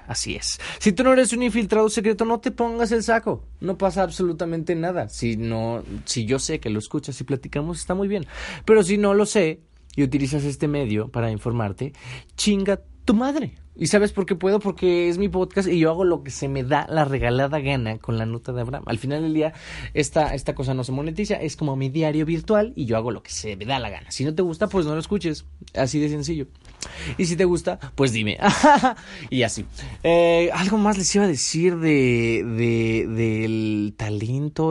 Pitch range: 115-170 Hz